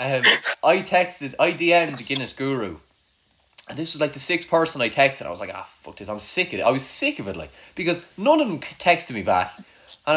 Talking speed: 240 wpm